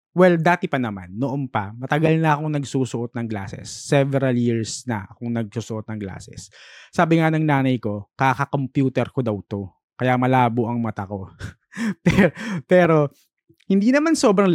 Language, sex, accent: Filipino, male, native